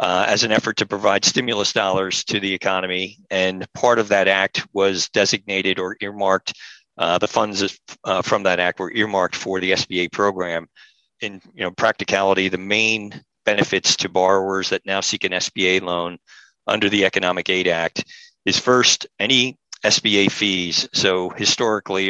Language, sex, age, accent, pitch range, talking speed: English, male, 50-69, American, 90-100 Hz, 165 wpm